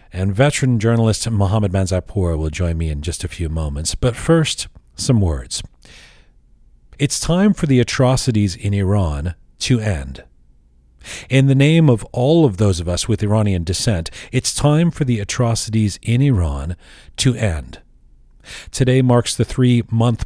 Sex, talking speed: male, 150 wpm